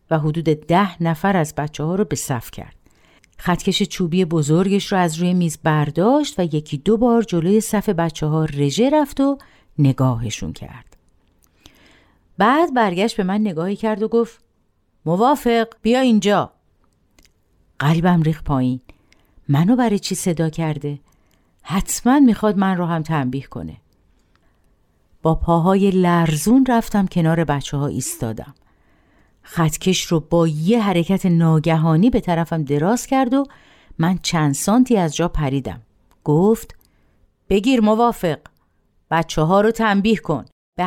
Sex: female